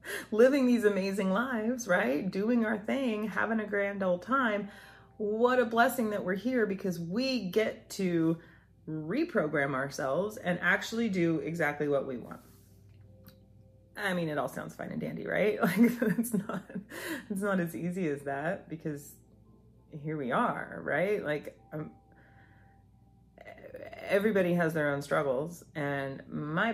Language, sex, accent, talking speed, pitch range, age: English, female, American, 145 wpm, 145-210 Hz, 30-49